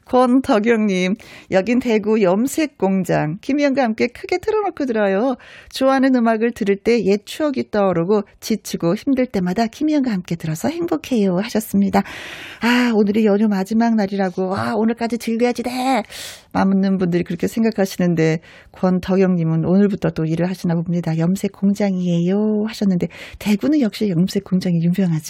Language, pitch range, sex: Korean, 185-280 Hz, female